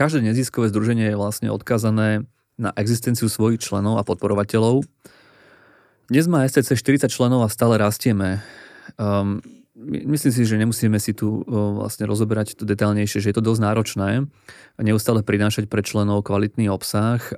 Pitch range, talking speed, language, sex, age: 105-120 Hz, 140 wpm, Slovak, male, 20-39